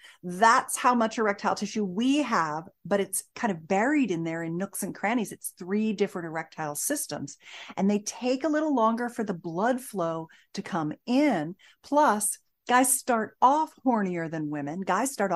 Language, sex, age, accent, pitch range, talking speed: English, female, 40-59, American, 165-240 Hz, 175 wpm